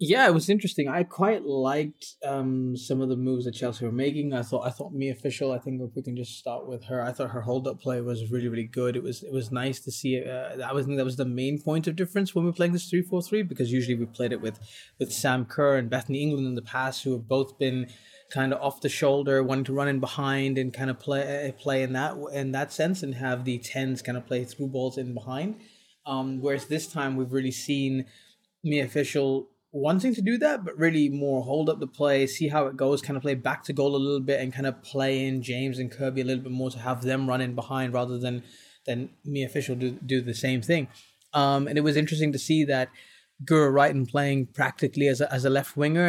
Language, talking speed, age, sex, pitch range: English, 255 wpm, 20-39, male, 130-145 Hz